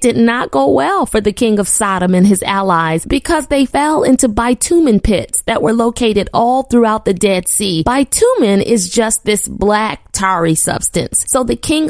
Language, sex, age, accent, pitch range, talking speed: English, female, 30-49, American, 220-280 Hz, 175 wpm